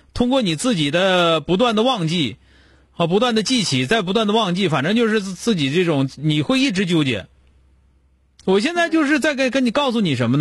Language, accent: Chinese, native